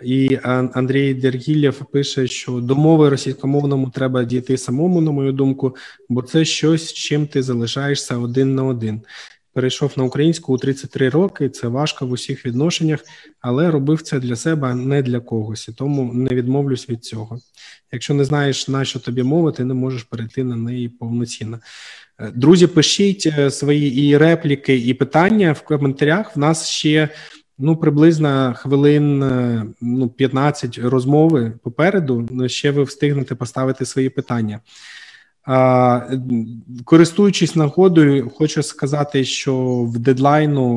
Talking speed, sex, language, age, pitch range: 140 wpm, male, Ukrainian, 20-39, 125-145 Hz